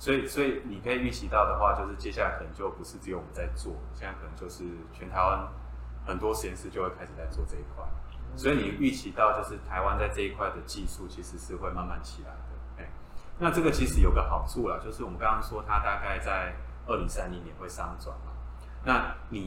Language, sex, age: Chinese, male, 20-39